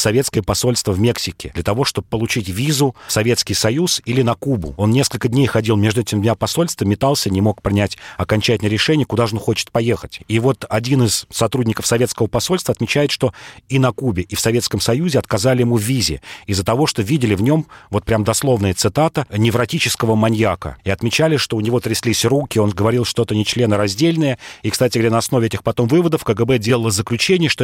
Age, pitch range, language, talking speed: 40-59, 105-125 Hz, Russian, 195 wpm